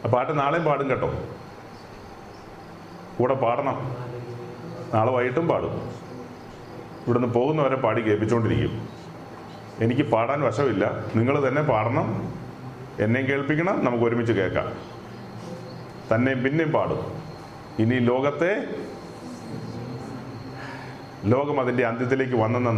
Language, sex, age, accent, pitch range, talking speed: Malayalam, male, 40-59, native, 115-150 Hz, 90 wpm